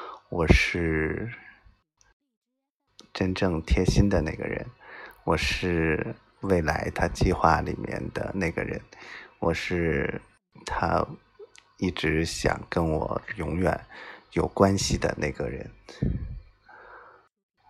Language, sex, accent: Chinese, male, native